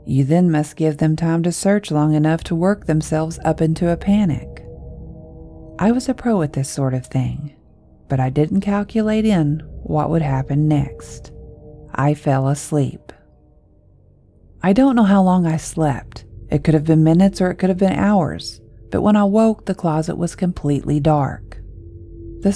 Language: English